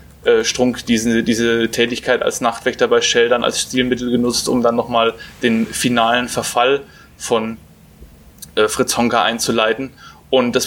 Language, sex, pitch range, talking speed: German, male, 120-135 Hz, 140 wpm